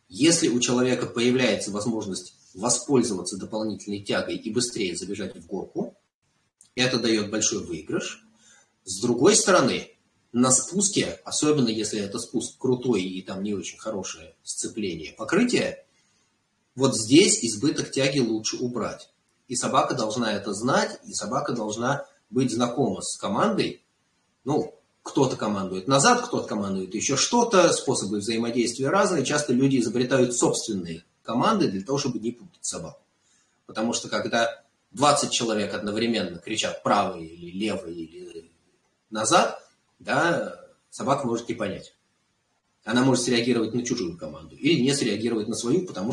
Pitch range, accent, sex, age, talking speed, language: 105-130 Hz, native, male, 30-49, 135 wpm, Russian